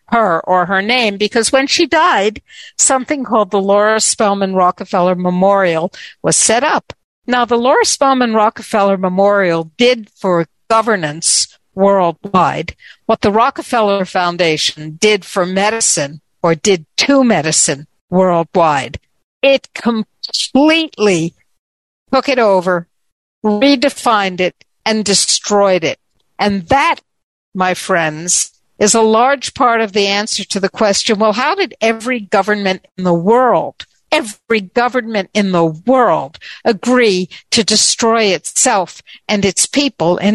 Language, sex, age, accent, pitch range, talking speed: English, female, 60-79, American, 185-225 Hz, 125 wpm